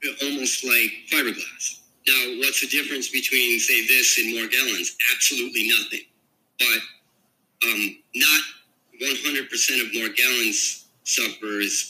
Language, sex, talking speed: English, male, 105 wpm